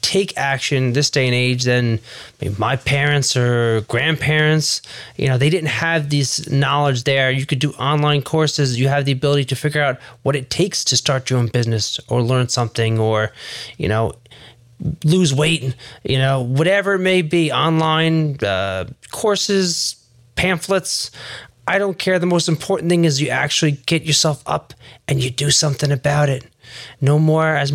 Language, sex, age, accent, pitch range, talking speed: English, male, 20-39, American, 125-160 Hz, 170 wpm